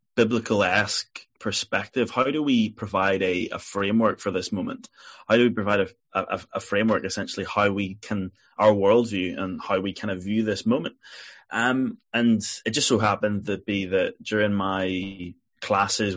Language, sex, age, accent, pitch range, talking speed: English, male, 20-39, British, 95-110 Hz, 170 wpm